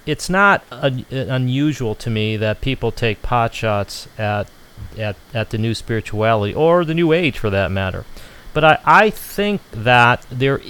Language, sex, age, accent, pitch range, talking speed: English, male, 40-59, American, 105-130 Hz, 165 wpm